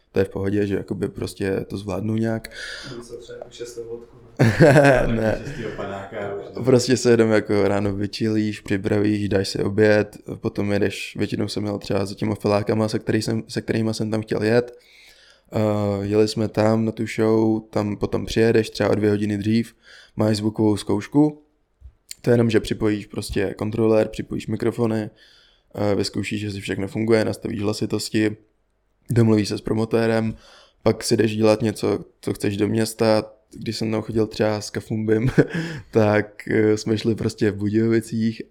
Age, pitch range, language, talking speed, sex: 20-39, 105-115 Hz, Czech, 155 wpm, male